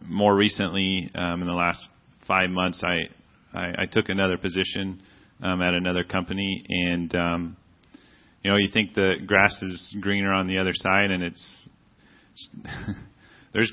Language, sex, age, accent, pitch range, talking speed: English, male, 30-49, American, 90-105 Hz, 155 wpm